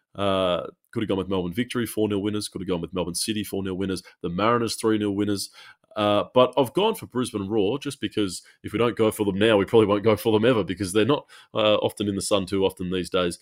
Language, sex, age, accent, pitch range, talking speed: English, male, 20-39, Australian, 90-105 Hz, 265 wpm